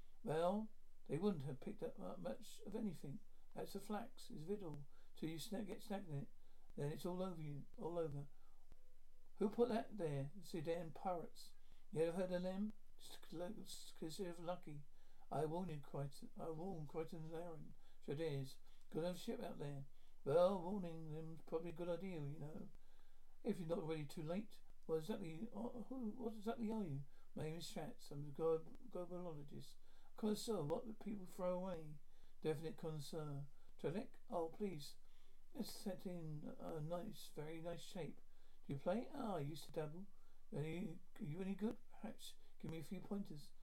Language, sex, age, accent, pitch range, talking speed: English, male, 60-79, British, 155-210 Hz, 180 wpm